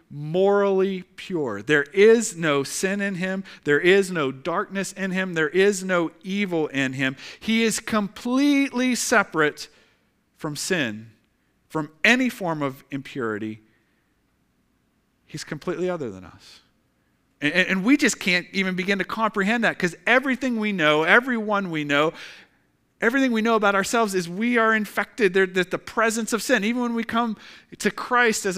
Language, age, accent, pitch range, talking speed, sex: English, 40-59, American, 155-225 Hz, 155 wpm, male